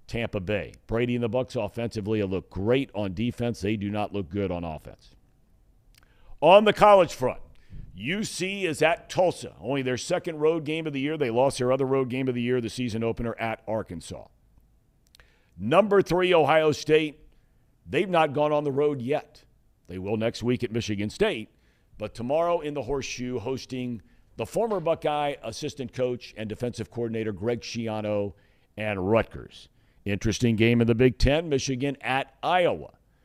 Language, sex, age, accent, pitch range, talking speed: English, male, 50-69, American, 110-145 Hz, 170 wpm